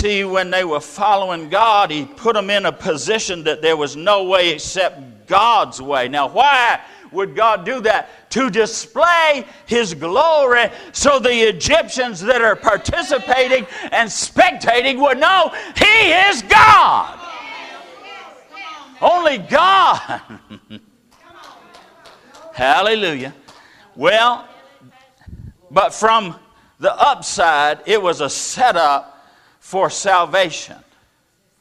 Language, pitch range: English, 180-265 Hz